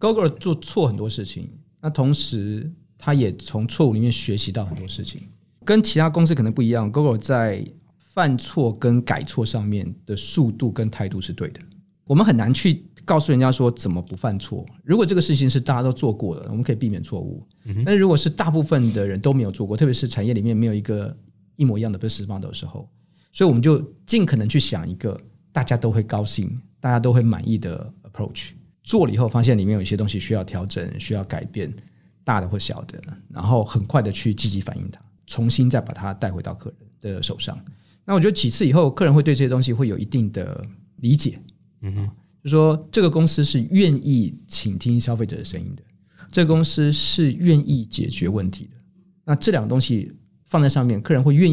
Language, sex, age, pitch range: Chinese, male, 40-59, 110-155 Hz